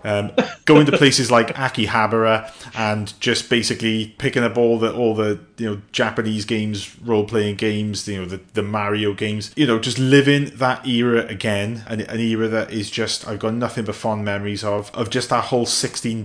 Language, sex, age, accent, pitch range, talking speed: English, male, 30-49, British, 105-125 Hz, 195 wpm